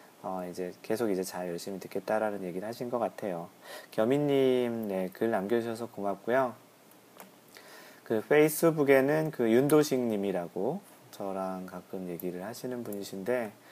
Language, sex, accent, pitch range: Korean, male, native, 100-130 Hz